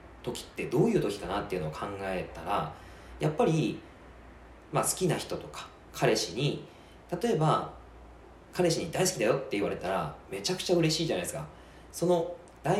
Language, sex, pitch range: Japanese, male, 110-170 Hz